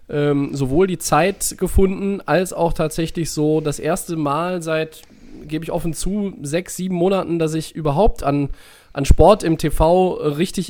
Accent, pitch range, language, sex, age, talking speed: German, 140-180 Hz, German, male, 20-39, 155 wpm